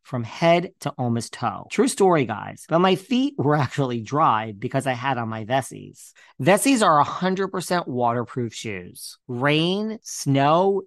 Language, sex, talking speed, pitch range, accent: English, male, 150 wpm, 120-160 Hz, American